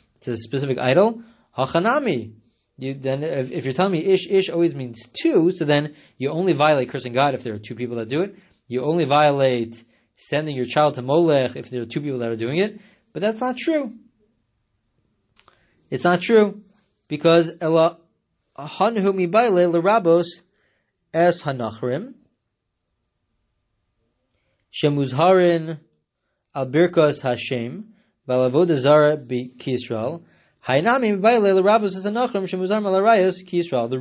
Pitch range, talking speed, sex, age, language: 125-185 Hz, 110 wpm, male, 30-49, English